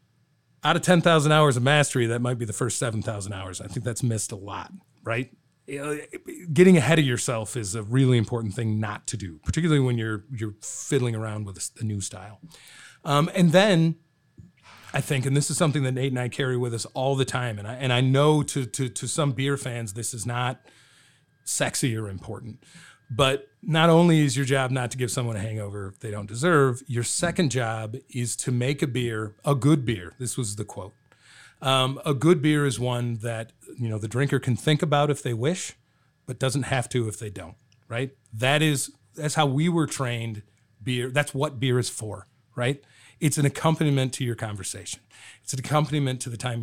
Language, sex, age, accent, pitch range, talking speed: English, male, 30-49, American, 115-145 Hz, 205 wpm